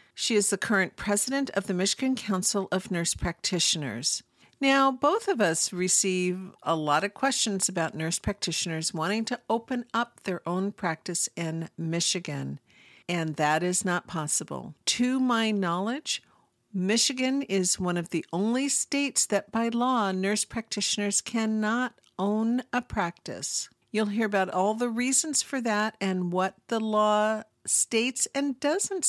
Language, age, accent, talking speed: English, 50-69, American, 150 wpm